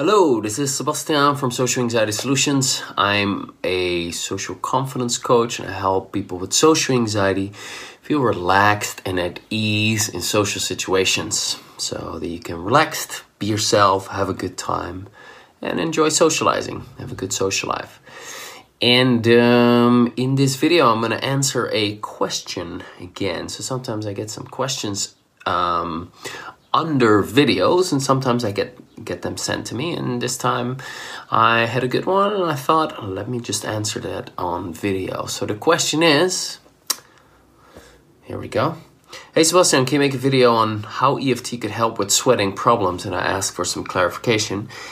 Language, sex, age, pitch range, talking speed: English, male, 30-49, 100-130 Hz, 165 wpm